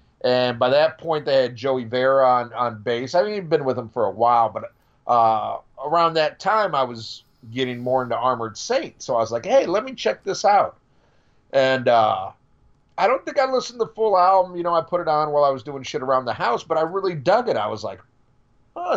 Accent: American